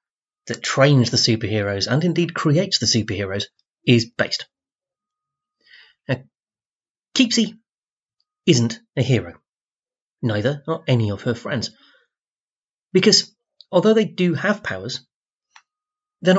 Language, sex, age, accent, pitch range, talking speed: English, male, 30-49, British, 115-190 Hz, 105 wpm